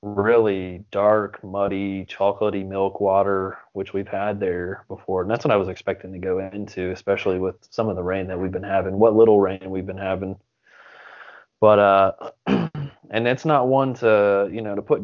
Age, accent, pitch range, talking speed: 20-39, American, 95-110 Hz, 190 wpm